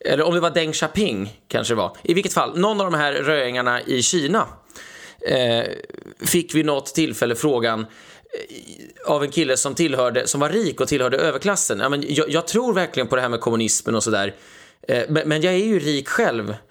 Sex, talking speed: male, 210 wpm